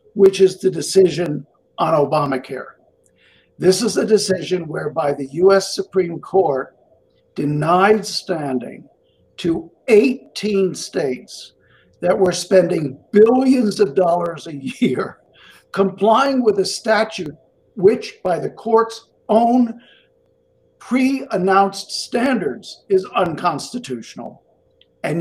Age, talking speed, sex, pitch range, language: 60-79, 100 wpm, male, 150-205 Hz, English